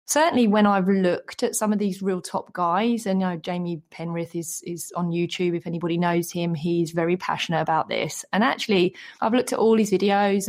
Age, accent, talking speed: 30-49, British, 210 wpm